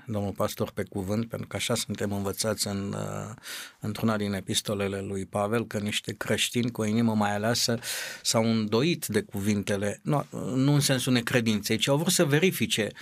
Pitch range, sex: 110-145 Hz, male